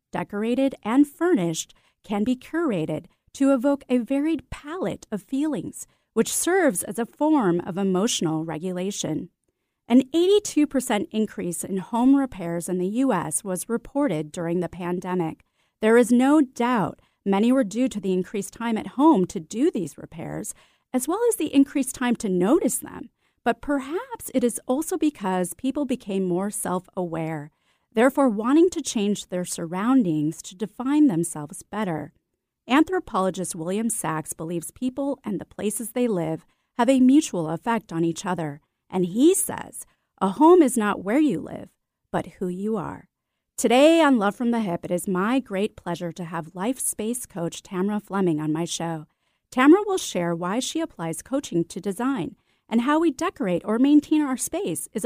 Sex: female